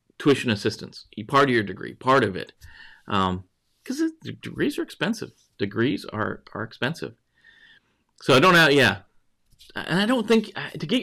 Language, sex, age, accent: English, male, 40-59, American